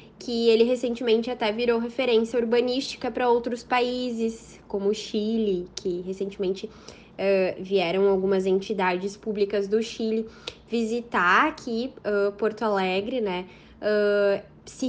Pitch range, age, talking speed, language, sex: 205-245 Hz, 10-29, 120 wpm, Portuguese, female